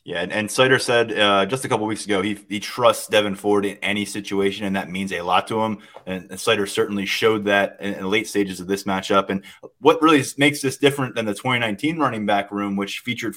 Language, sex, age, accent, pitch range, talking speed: English, male, 20-39, American, 100-115 Hz, 245 wpm